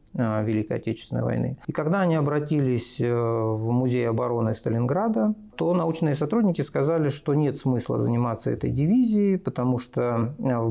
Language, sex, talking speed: Russian, male, 135 wpm